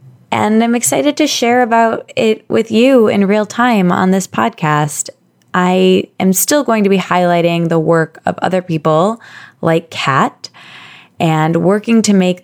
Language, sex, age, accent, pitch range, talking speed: English, female, 20-39, American, 165-215 Hz, 160 wpm